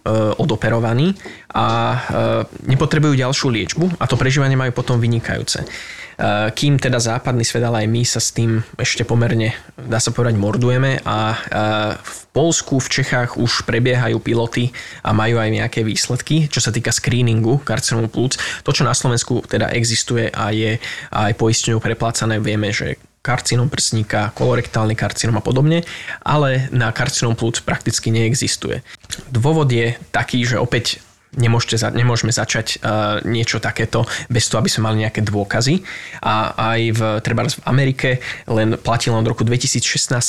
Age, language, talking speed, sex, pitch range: 20-39, Slovak, 145 wpm, male, 110-125 Hz